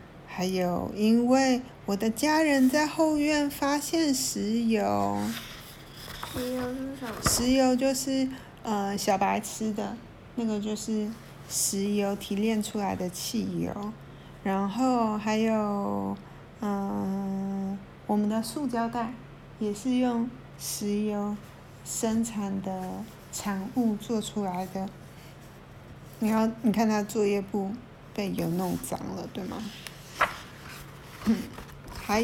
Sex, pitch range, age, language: female, 200-245 Hz, 50-69, Chinese